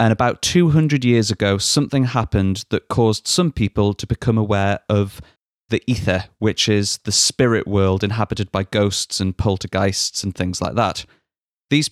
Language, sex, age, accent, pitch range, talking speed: English, male, 20-39, British, 100-120 Hz, 160 wpm